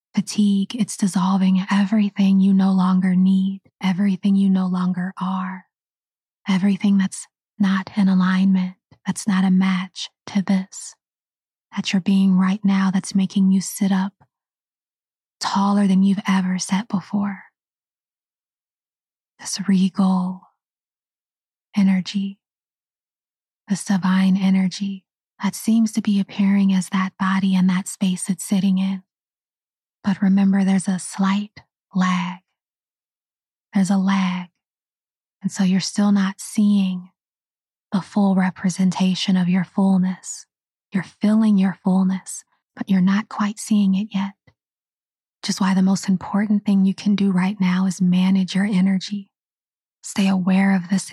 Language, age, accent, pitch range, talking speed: English, 20-39, American, 190-200 Hz, 130 wpm